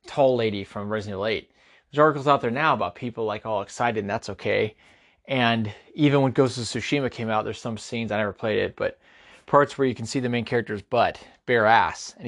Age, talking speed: 30-49, 230 wpm